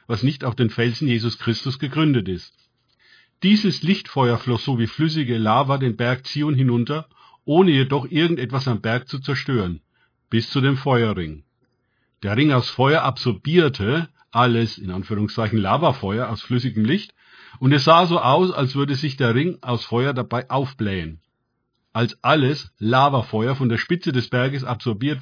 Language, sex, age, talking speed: German, male, 50-69, 155 wpm